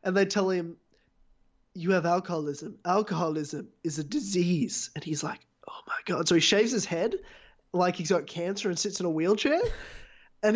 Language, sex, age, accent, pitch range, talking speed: English, male, 20-39, Australian, 180-250 Hz, 180 wpm